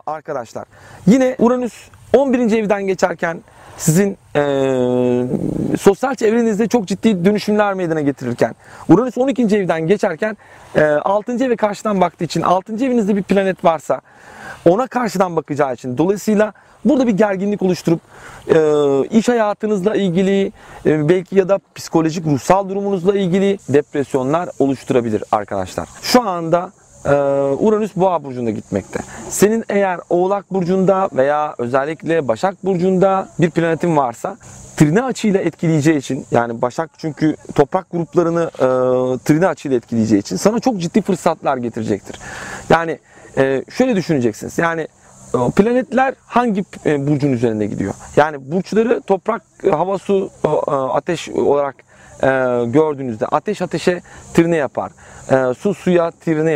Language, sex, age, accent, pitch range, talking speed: Turkish, male, 40-59, native, 140-200 Hz, 120 wpm